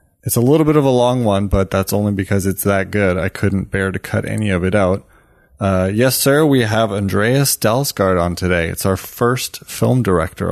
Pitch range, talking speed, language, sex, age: 100-125 Hz, 215 wpm, English, male, 20-39